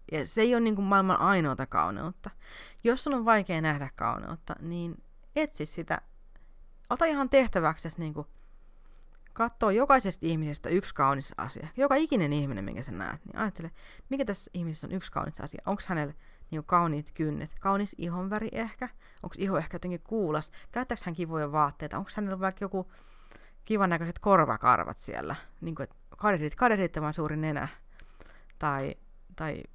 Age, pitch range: 30-49, 150-205 Hz